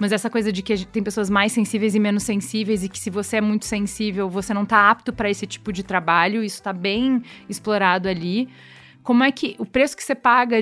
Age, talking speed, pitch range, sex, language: 20-39, 245 wpm, 195-230 Hz, female, Portuguese